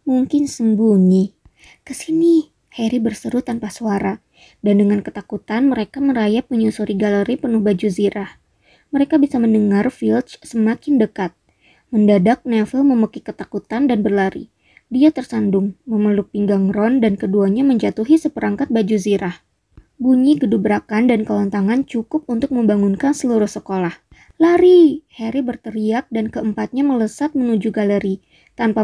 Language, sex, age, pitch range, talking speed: Indonesian, male, 20-39, 205-260 Hz, 120 wpm